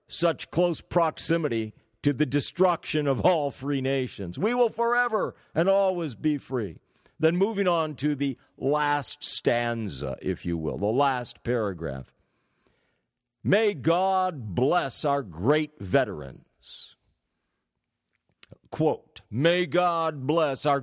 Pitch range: 125-170 Hz